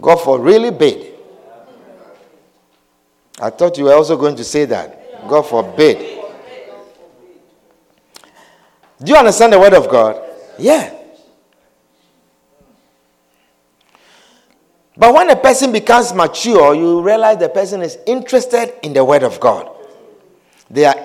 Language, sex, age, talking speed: English, male, 50-69, 120 wpm